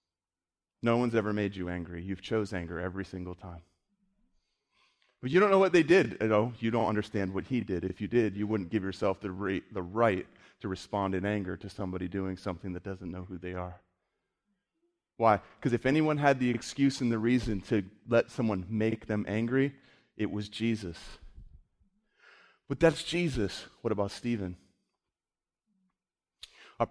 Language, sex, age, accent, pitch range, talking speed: English, male, 30-49, American, 95-120 Hz, 165 wpm